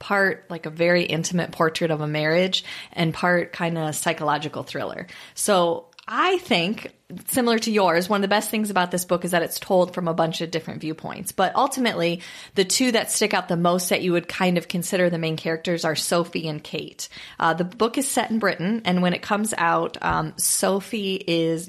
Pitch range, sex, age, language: 165-195 Hz, female, 30-49, English